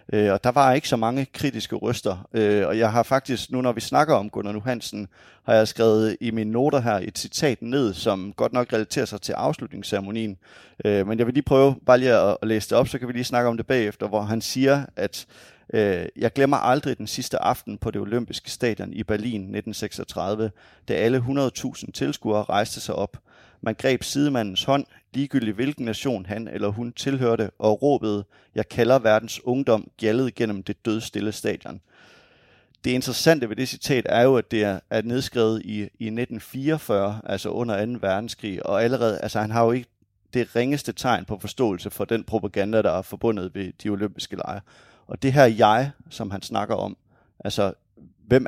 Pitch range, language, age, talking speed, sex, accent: 105-125 Hz, English, 30-49, 185 wpm, male, Danish